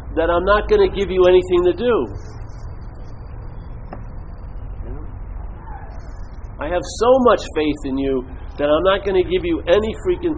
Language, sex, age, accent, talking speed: English, male, 50-69, American, 155 wpm